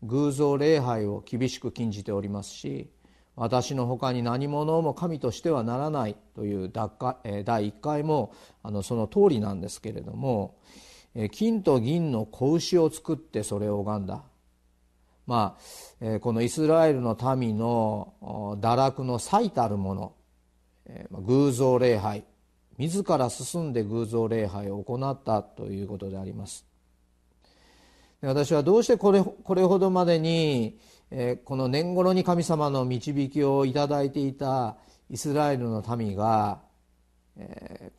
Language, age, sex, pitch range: Japanese, 40-59, male, 105-145 Hz